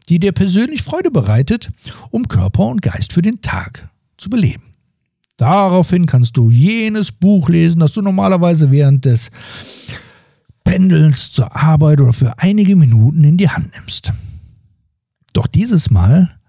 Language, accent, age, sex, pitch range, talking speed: German, German, 60-79, male, 120-185 Hz, 140 wpm